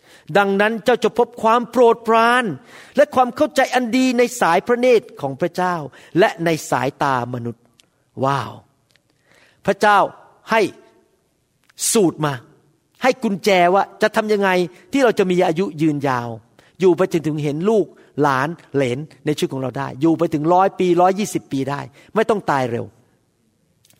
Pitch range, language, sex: 145-200 Hz, Thai, male